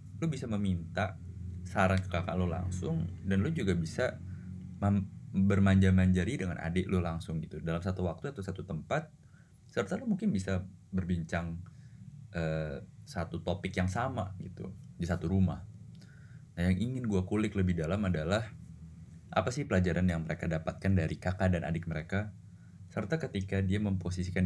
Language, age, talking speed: Indonesian, 20-39, 150 wpm